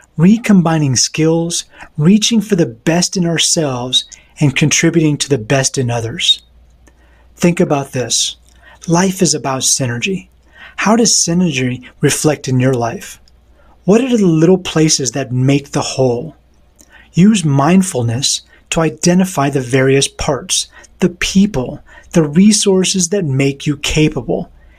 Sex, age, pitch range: male, 30-49, 130-175 Hz